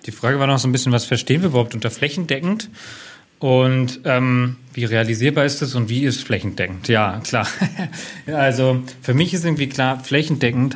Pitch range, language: 120-135 Hz, German